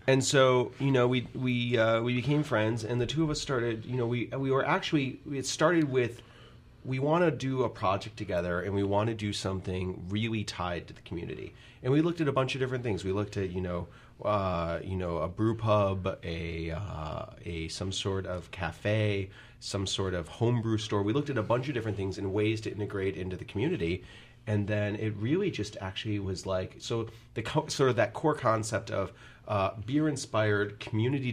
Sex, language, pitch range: male, English, 95-120 Hz